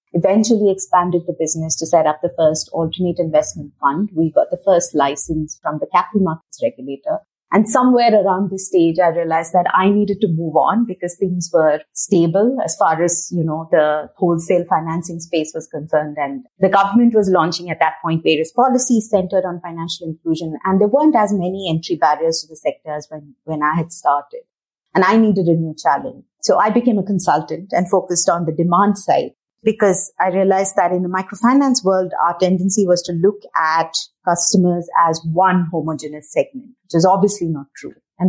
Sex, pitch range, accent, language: female, 160-200 Hz, Indian, English